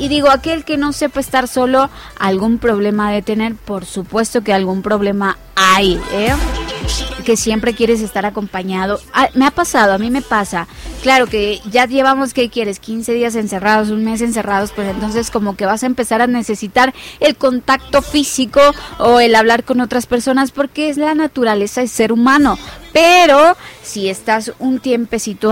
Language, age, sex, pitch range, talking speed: Spanish, 20-39, female, 205-270 Hz, 175 wpm